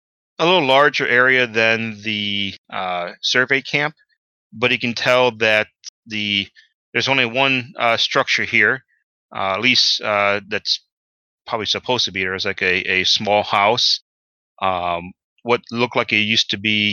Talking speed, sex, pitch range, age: 160 wpm, male, 90-115 Hz, 30-49